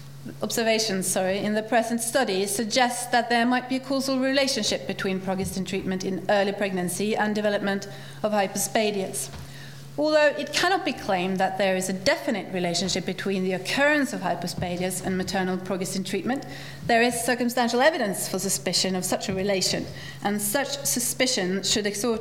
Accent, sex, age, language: Swedish, female, 30-49, English